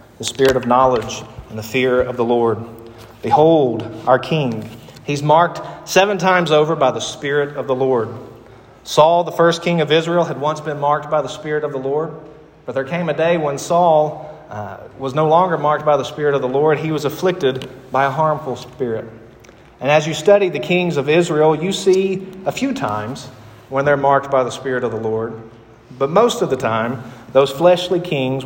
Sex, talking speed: male, 200 wpm